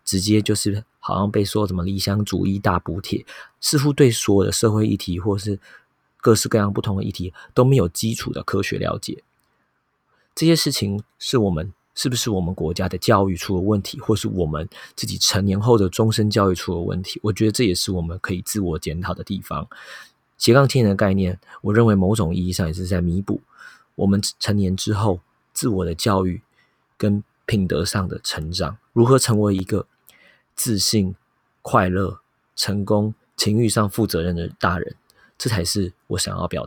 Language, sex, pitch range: Chinese, male, 90-110 Hz